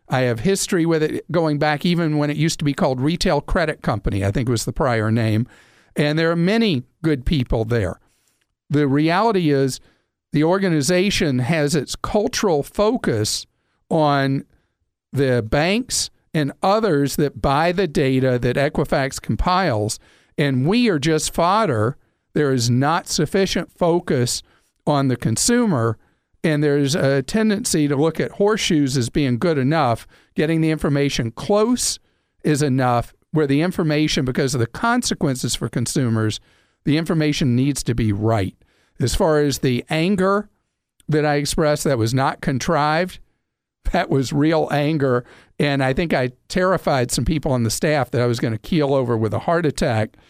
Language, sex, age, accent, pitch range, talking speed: English, male, 50-69, American, 125-165 Hz, 160 wpm